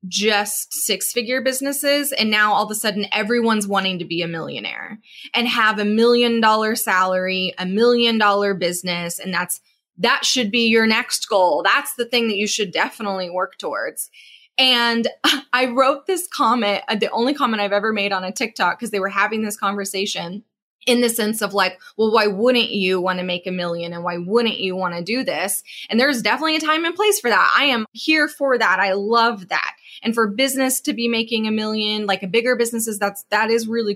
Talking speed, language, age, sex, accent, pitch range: 210 wpm, English, 20-39, female, American, 200-245 Hz